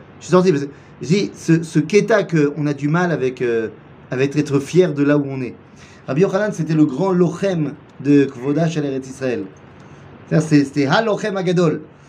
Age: 30-49